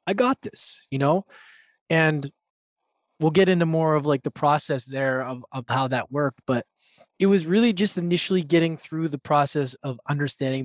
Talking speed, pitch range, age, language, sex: 180 wpm, 130-165 Hz, 20-39, English, male